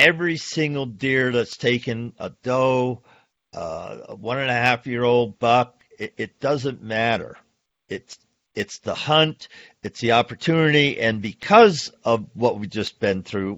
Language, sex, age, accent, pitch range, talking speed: English, male, 50-69, American, 110-140 Hz, 135 wpm